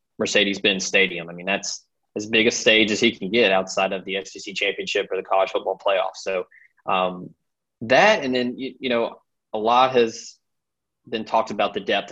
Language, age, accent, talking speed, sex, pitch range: English, 20-39, American, 195 wpm, male, 100-110 Hz